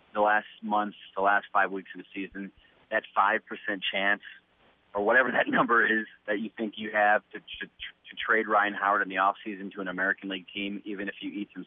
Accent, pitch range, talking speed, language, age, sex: American, 100-110 Hz, 220 wpm, English, 30-49, male